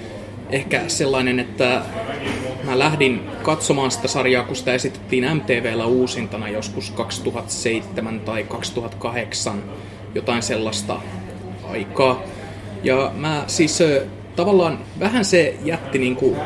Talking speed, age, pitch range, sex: 105 wpm, 20-39, 110-135 Hz, male